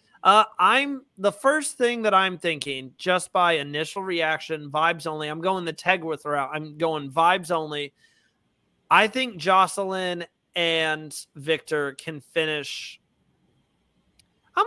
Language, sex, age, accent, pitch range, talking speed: English, male, 30-49, American, 155-195 Hz, 130 wpm